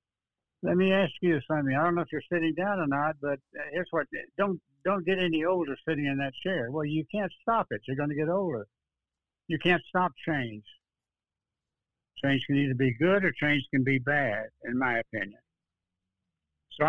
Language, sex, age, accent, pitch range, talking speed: English, male, 60-79, American, 130-170 Hz, 190 wpm